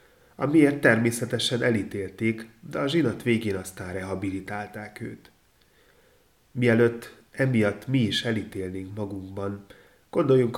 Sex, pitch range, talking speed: male, 95-115 Hz, 95 wpm